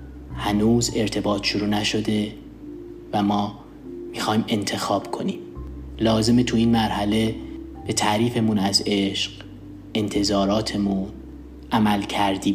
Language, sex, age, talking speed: Persian, male, 30-49, 95 wpm